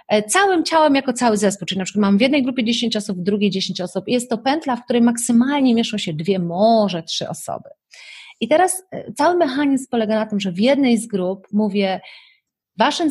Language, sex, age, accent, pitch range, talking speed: Polish, female, 30-49, native, 200-265 Hz, 200 wpm